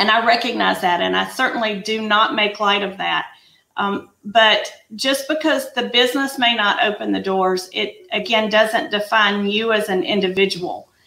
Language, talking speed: English, 175 wpm